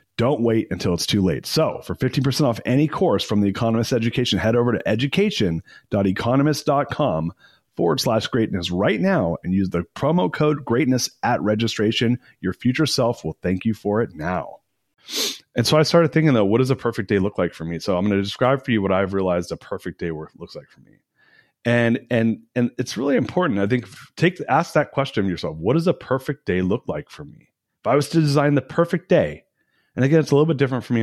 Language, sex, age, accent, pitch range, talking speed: English, male, 30-49, American, 95-130 Hz, 220 wpm